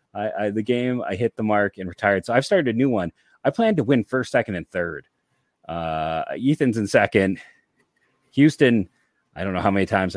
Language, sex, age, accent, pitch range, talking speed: English, male, 30-49, American, 90-120 Hz, 205 wpm